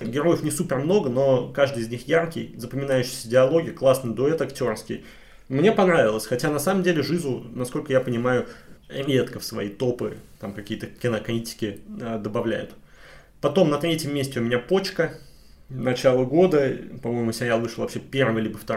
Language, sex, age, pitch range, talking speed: Russian, male, 20-39, 115-135 Hz, 155 wpm